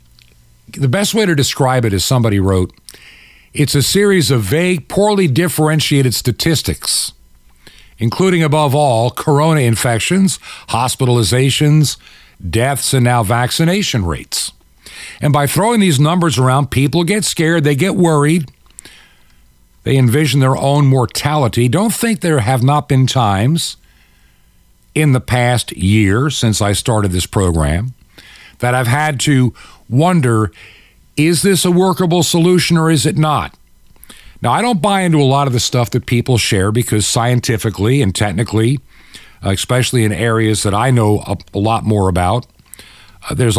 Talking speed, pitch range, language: 145 wpm, 100-150 Hz, English